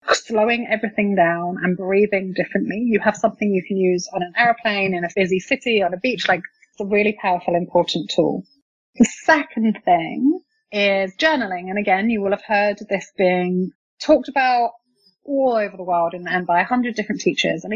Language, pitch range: English, 185-230 Hz